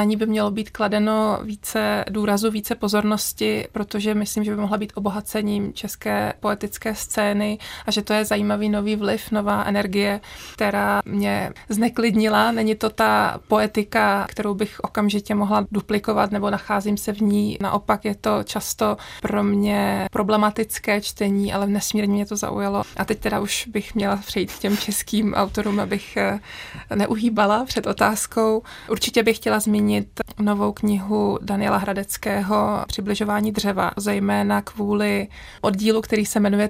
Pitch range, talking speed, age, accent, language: 205-220 Hz, 145 wpm, 20-39, native, Czech